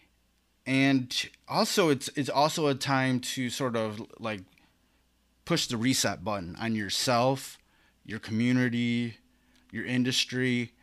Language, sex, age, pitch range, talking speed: English, male, 20-39, 105-125 Hz, 115 wpm